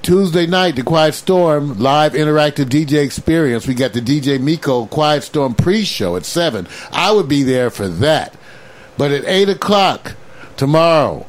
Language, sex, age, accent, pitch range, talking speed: English, male, 60-79, American, 125-160 Hz, 160 wpm